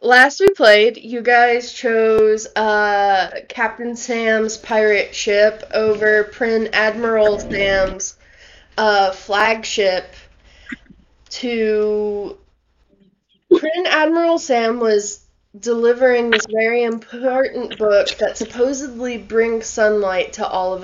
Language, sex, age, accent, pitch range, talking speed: English, female, 20-39, American, 200-235 Hz, 100 wpm